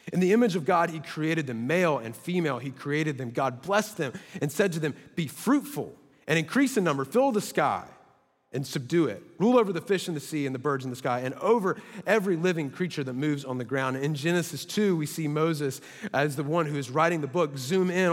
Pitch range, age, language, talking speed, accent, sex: 135-175 Hz, 30-49, English, 240 wpm, American, male